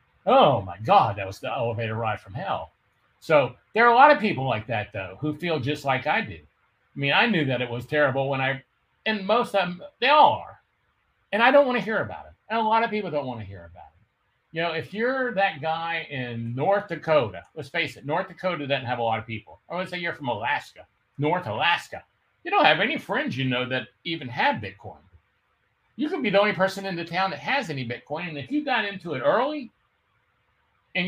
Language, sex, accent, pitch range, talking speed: English, male, American, 115-170 Hz, 235 wpm